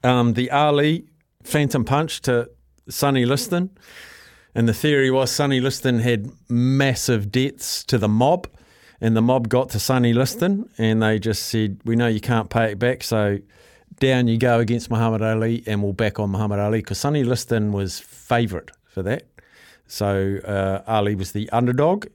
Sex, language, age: male, English, 50-69